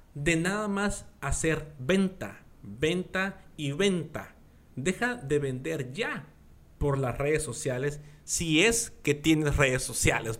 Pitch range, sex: 110-155 Hz, male